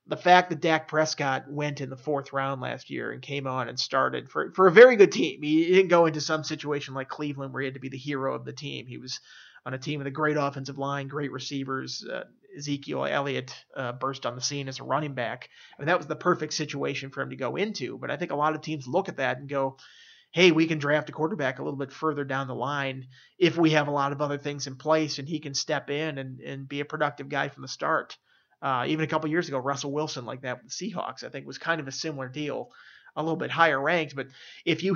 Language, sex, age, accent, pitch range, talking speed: English, male, 30-49, American, 135-160 Hz, 265 wpm